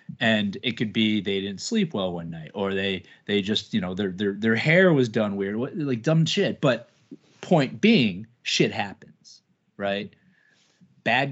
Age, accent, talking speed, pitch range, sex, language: 30-49, American, 175 wpm, 105-135 Hz, male, English